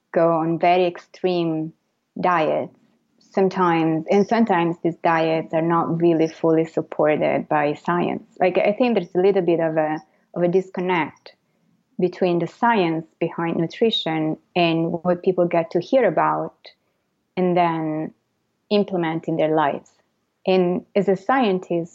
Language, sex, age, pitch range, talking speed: English, female, 30-49, 170-205 Hz, 140 wpm